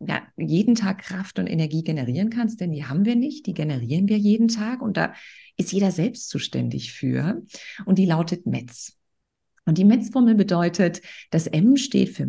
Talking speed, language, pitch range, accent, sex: 180 wpm, German, 180-240 Hz, German, female